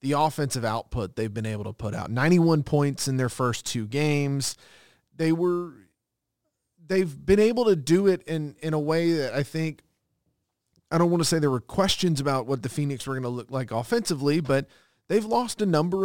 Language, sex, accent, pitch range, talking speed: English, male, American, 125-160 Hz, 195 wpm